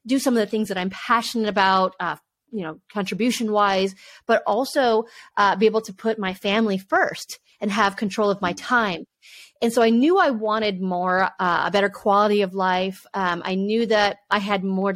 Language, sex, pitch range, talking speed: English, female, 180-215 Hz, 200 wpm